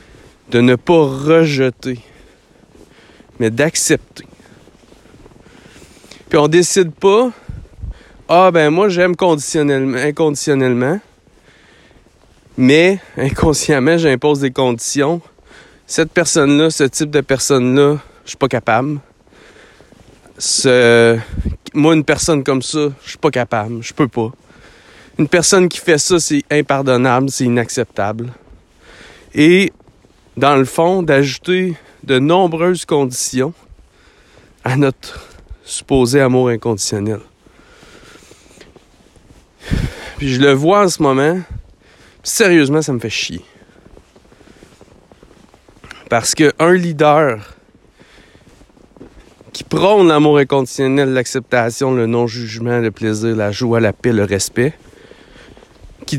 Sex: male